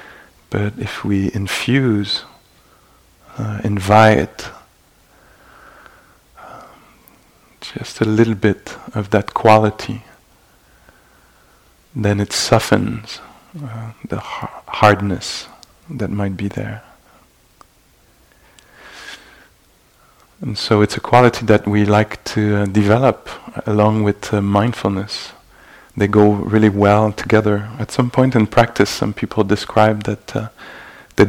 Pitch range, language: 105-110 Hz, English